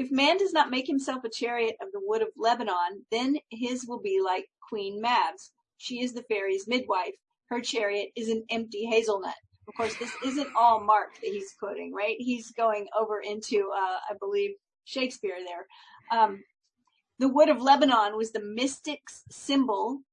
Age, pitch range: 40-59, 210-260 Hz